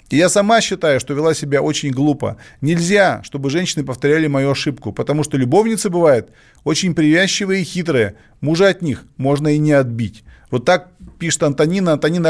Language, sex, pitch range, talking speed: Russian, male, 145-190 Hz, 165 wpm